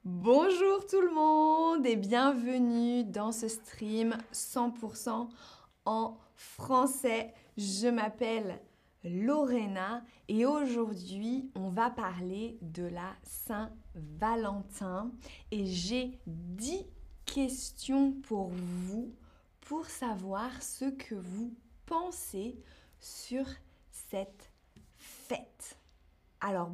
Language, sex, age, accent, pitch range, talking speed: French, female, 20-39, French, 195-270 Hz, 90 wpm